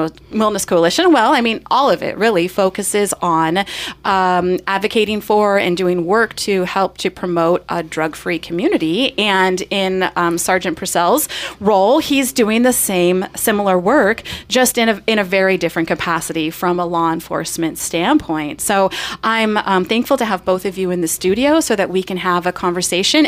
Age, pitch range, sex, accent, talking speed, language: 30-49, 185-265 Hz, female, American, 175 wpm, English